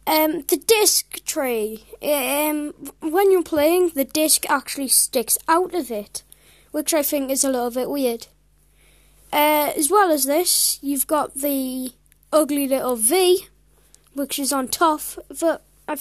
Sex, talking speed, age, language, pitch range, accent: female, 150 wpm, 20-39, English, 265-325 Hz, British